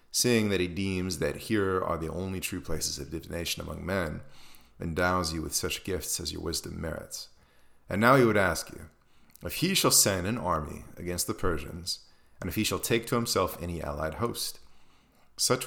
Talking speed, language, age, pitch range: 190 wpm, English, 30-49, 75-100 Hz